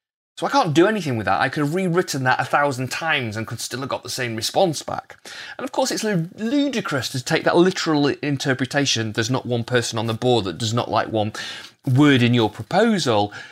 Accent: British